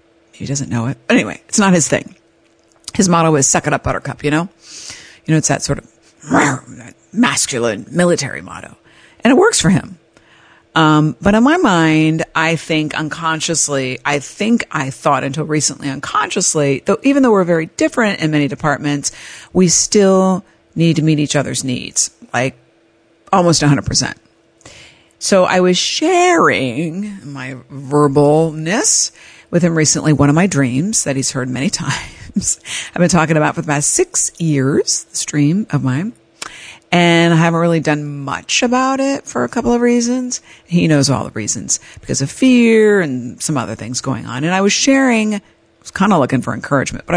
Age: 50-69